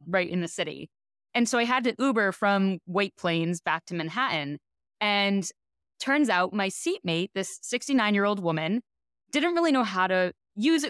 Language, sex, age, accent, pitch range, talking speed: English, female, 20-39, American, 195-295 Hz, 175 wpm